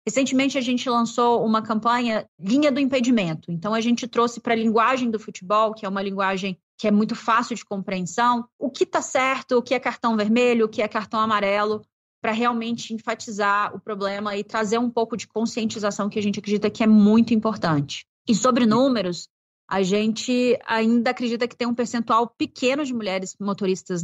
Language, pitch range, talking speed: Portuguese, 200-235 Hz, 190 wpm